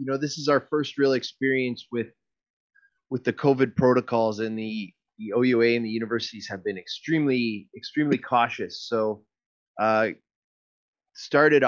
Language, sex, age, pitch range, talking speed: English, male, 30-49, 110-150 Hz, 145 wpm